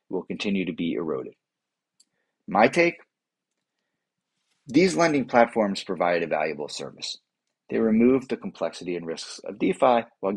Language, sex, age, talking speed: English, male, 30-49, 135 wpm